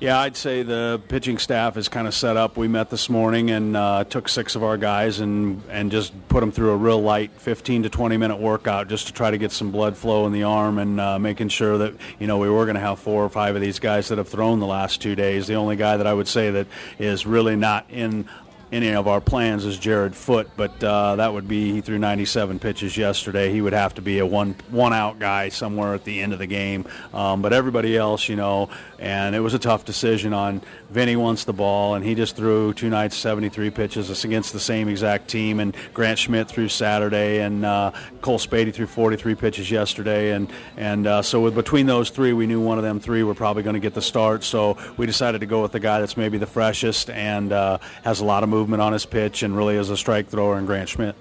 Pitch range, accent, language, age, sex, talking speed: 105-110 Hz, American, English, 40-59, male, 250 wpm